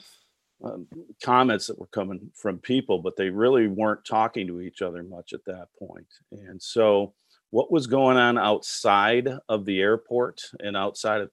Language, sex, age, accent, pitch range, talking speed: English, male, 40-59, American, 95-115 Hz, 170 wpm